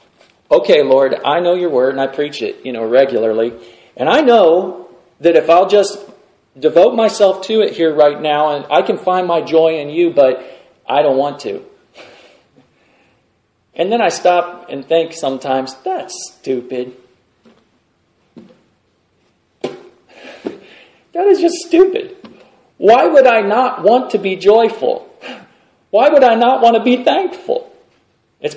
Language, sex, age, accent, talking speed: English, male, 40-59, American, 150 wpm